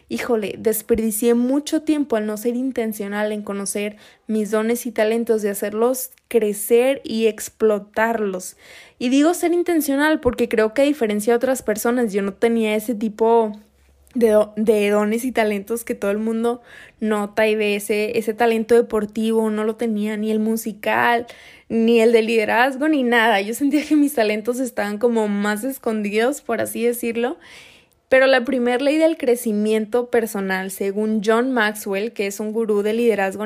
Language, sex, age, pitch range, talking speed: Spanish, female, 20-39, 215-245 Hz, 165 wpm